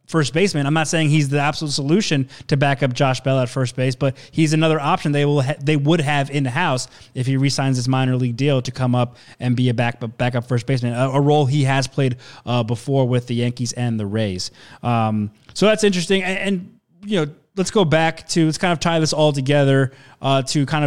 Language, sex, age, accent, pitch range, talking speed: English, male, 20-39, American, 130-155 Hz, 235 wpm